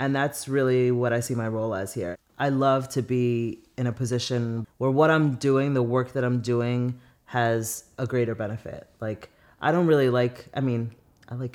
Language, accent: English, American